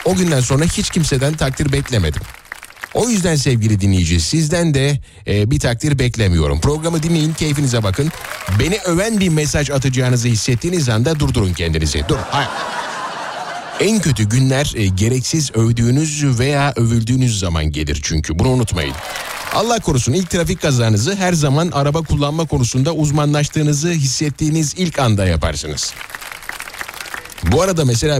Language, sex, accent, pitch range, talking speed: Turkish, male, native, 115-150 Hz, 135 wpm